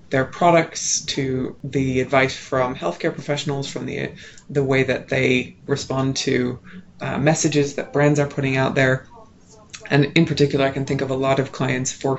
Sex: female